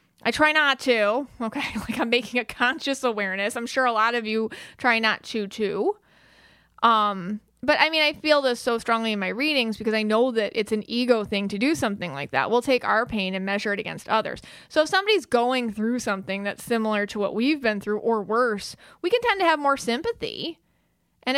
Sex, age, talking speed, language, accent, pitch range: female, 20-39, 220 wpm, English, American, 205-255 Hz